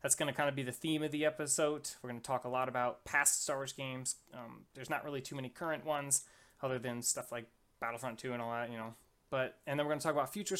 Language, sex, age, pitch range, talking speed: English, male, 20-39, 125-150 Hz, 285 wpm